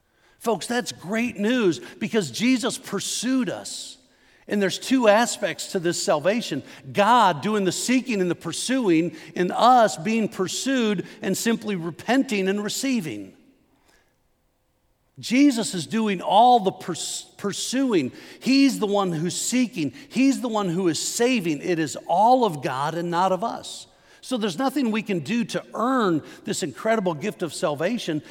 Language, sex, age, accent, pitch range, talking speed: English, male, 50-69, American, 180-230 Hz, 150 wpm